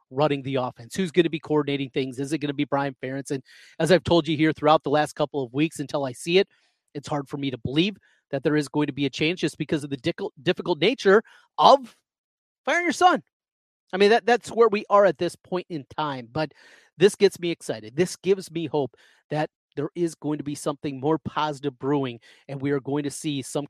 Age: 30-49